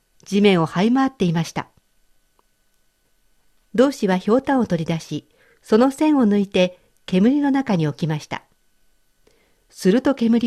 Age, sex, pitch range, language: 50-69, female, 170-250 Hz, Japanese